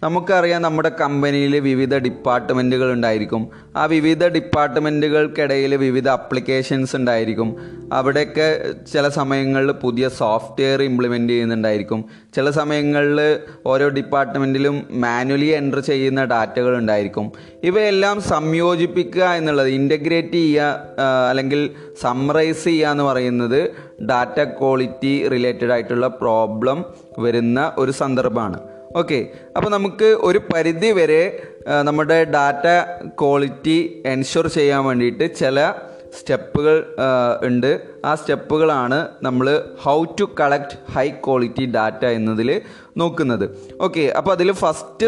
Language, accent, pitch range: Malayalam, native, 125-165 Hz